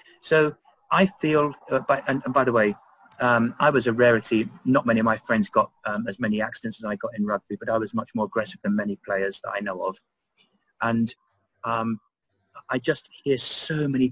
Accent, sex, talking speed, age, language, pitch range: British, male, 215 wpm, 30-49, English, 110-130 Hz